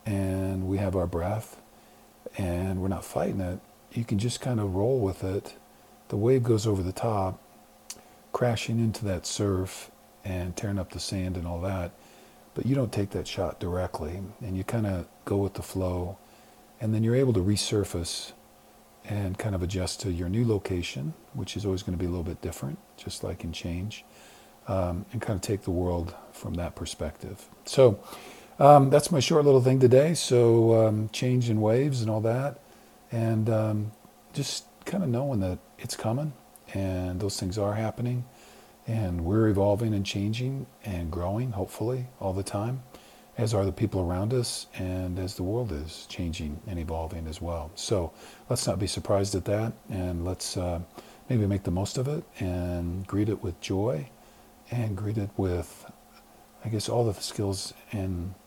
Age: 50-69